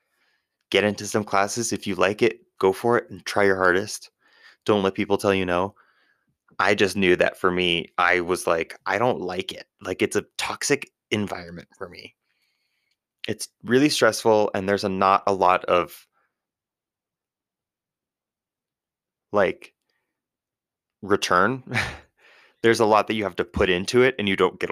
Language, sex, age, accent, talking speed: English, male, 20-39, American, 160 wpm